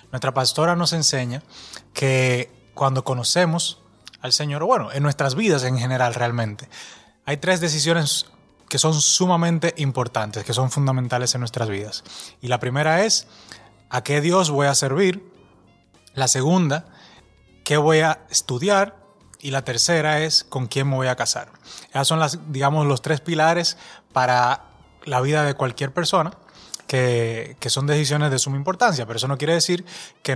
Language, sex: Spanish, male